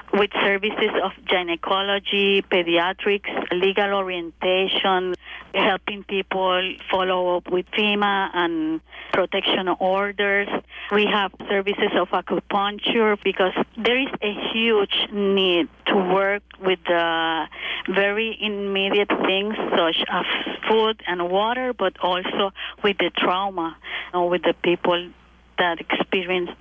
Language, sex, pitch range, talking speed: English, female, 175-205 Hz, 115 wpm